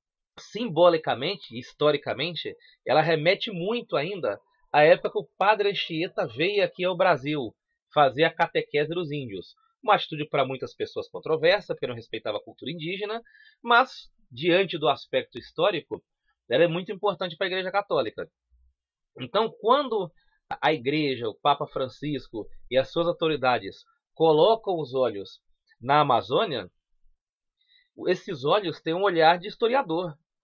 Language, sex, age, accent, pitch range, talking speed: Portuguese, male, 30-49, Brazilian, 155-240 Hz, 135 wpm